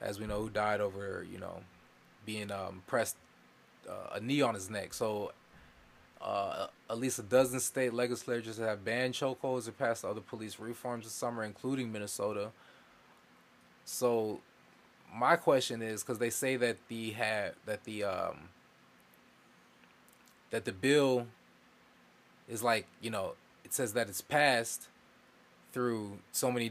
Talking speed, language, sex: 150 wpm, English, male